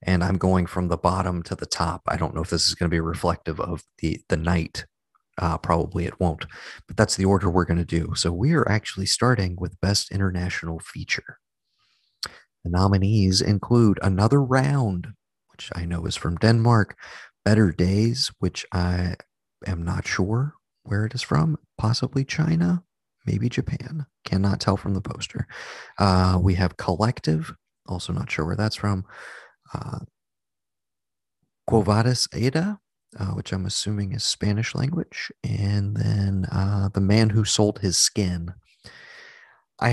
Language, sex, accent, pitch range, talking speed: English, male, American, 85-110 Hz, 160 wpm